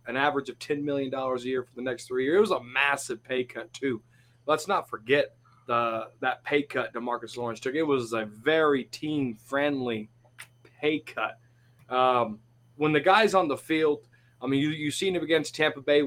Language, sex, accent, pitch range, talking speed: English, male, American, 120-150 Hz, 195 wpm